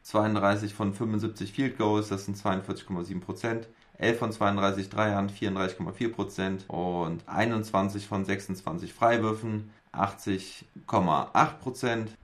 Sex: male